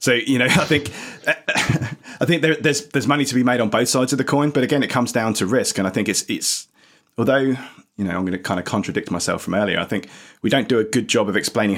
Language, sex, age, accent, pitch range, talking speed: English, male, 30-49, British, 95-120 Hz, 275 wpm